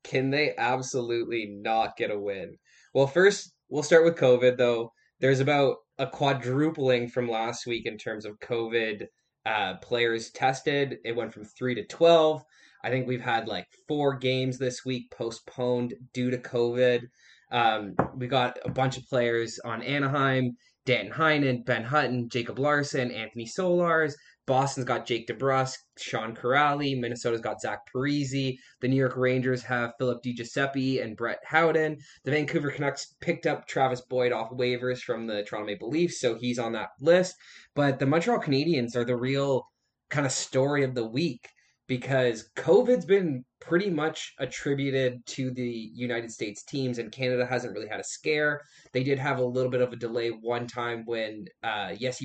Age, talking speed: 20-39, 170 wpm